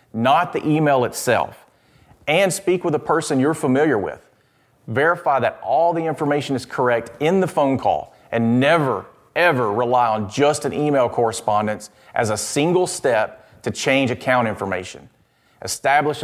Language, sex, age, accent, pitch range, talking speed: English, male, 40-59, American, 120-150 Hz, 150 wpm